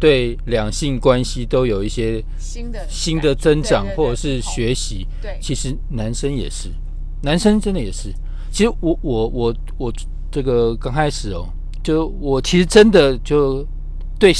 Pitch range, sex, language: 100-165 Hz, male, Chinese